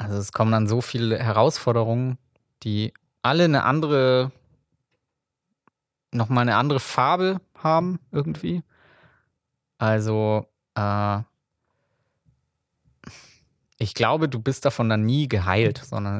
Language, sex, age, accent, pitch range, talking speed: German, male, 20-39, German, 105-130 Hz, 105 wpm